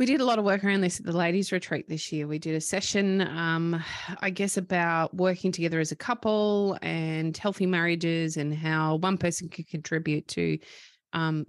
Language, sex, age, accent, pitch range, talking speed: English, female, 20-39, Australian, 160-190 Hz, 200 wpm